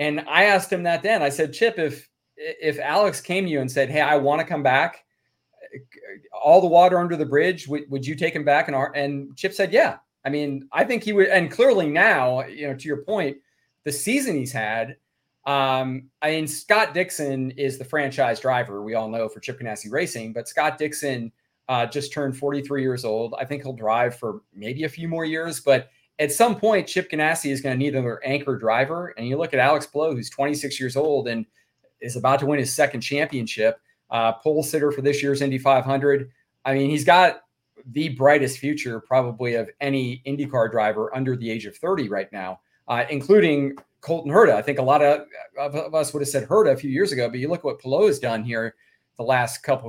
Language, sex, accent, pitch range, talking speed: English, male, American, 130-155 Hz, 220 wpm